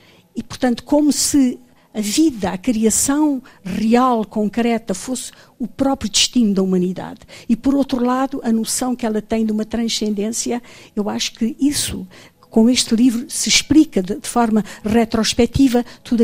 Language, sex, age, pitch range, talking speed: Portuguese, female, 50-69, 205-250 Hz, 155 wpm